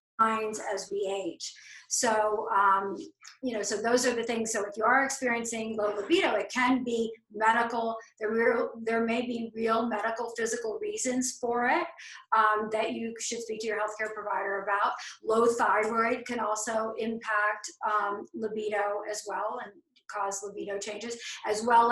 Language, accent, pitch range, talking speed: English, American, 210-240 Hz, 160 wpm